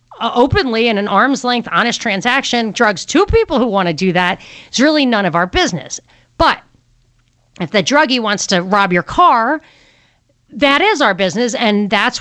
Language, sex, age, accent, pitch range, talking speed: English, female, 40-59, American, 185-255 Hz, 180 wpm